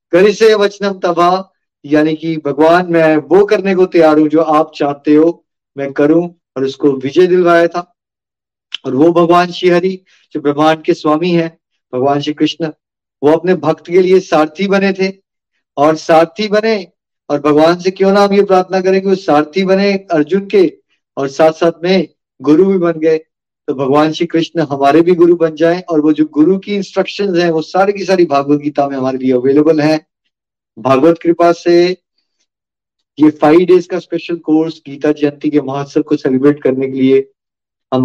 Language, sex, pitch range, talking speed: Hindi, male, 150-180 Hz, 180 wpm